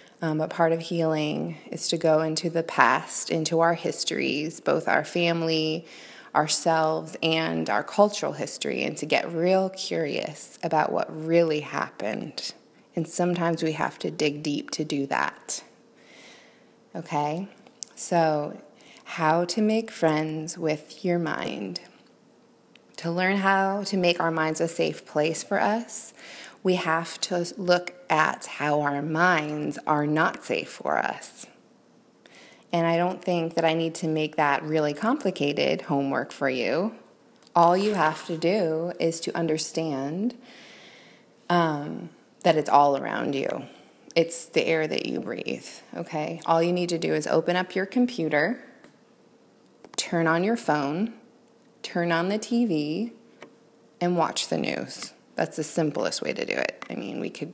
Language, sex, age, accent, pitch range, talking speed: English, female, 20-39, American, 155-190 Hz, 150 wpm